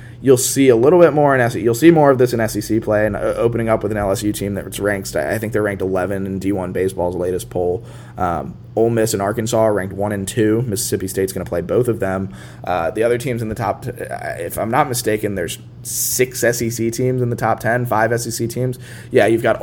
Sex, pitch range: male, 95-120 Hz